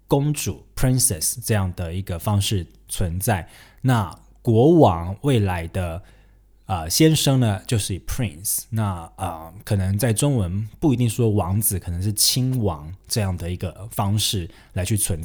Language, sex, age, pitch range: Chinese, male, 20-39, 95-120 Hz